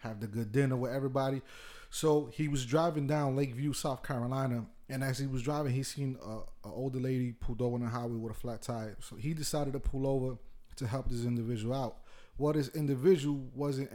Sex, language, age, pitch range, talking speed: male, English, 30-49, 115-135 Hz, 205 wpm